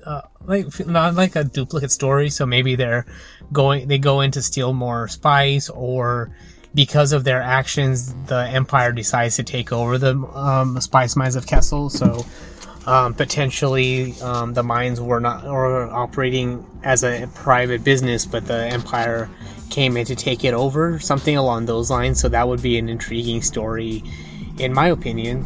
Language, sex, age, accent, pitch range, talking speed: English, male, 20-39, American, 120-145 Hz, 170 wpm